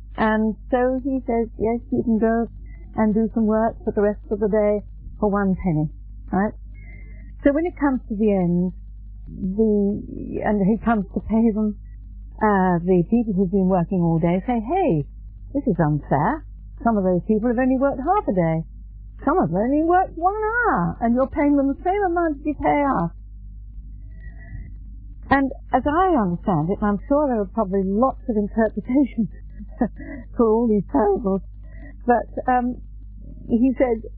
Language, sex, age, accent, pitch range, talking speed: English, female, 50-69, British, 175-235 Hz, 175 wpm